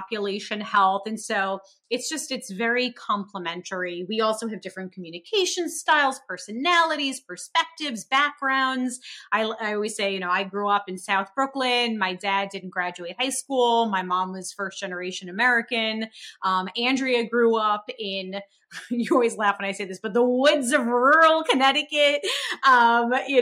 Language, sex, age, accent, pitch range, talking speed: English, female, 30-49, American, 195-260 Hz, 160 wpm